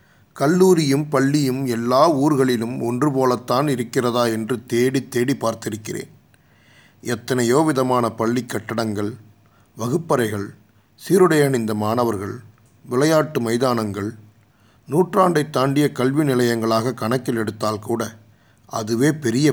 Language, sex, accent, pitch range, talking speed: Tamil, male, native, 110-135 Hz, 90 wpm